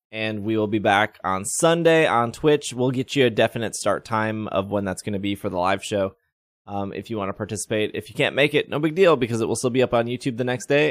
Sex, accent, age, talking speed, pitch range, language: male, American, 20-39, 280 wpm, 110-145 Hz, English